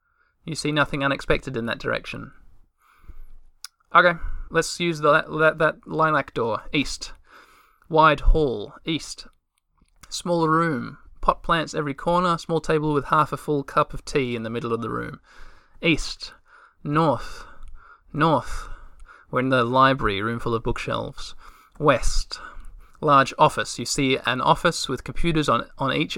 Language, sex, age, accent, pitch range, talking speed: English, male, 20-39, Australian, 135-170 Hz, 145 wpm